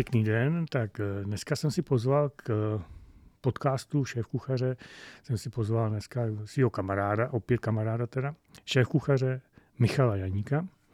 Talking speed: 120 wpm